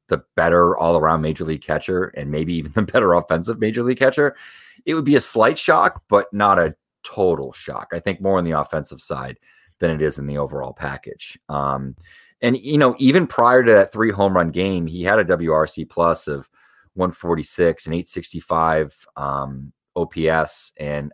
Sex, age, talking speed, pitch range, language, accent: male, 30-49, 185 wpm, 75-90 Hz, English, American